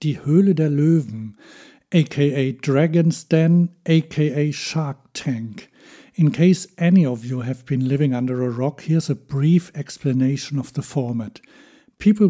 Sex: male